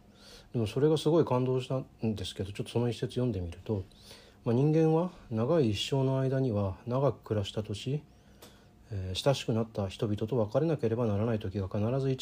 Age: 40-59